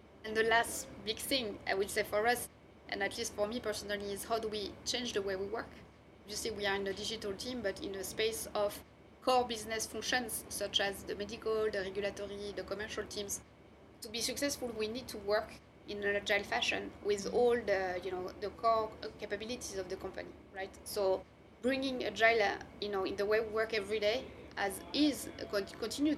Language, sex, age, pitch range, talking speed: English, female, 20-39, 200-230 Hz, 200 wpm